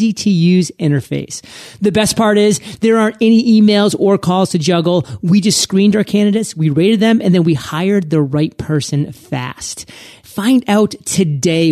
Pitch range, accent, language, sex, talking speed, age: 150-195 Hz, American, English, male, 175 wpm, 30-49